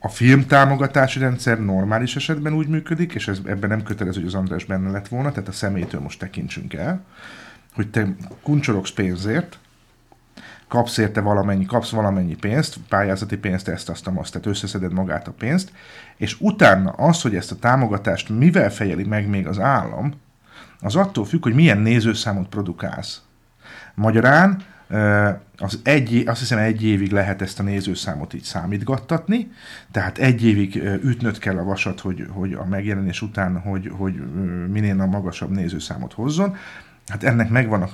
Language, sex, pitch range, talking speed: Hungarian, male, 95-135 Hz, 155 wpm